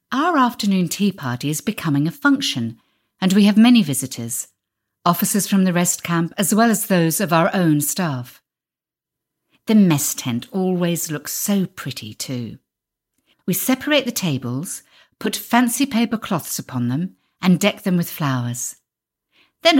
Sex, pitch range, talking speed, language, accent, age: female, 135-205 Hz, 150 wpm, English, British, 50-69